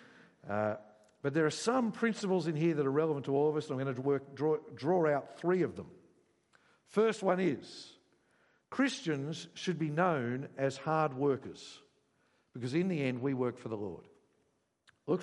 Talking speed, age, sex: 180 wpm, 50-69, male